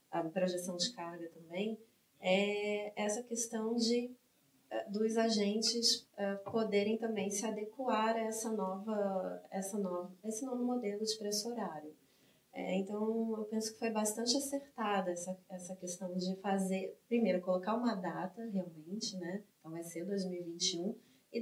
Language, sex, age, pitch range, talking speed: Portuguese, female, 20-39, 180-215 Hz, 140 wpm